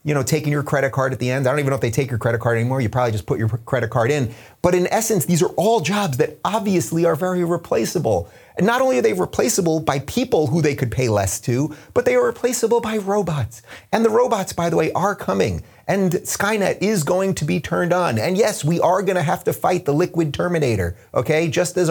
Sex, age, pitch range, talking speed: male, 30-49, 120-180 Hz, 245 wpm